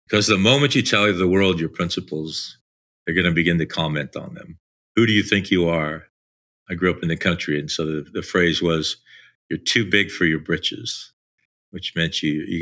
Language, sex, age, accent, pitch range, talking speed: English, male, 50-69, American, 85-105 Hz, 215 wpm